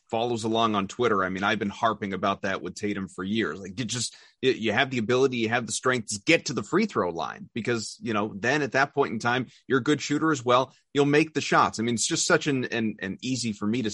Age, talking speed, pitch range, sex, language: 30-49, 275 wpm, 105-130 Hz, male, English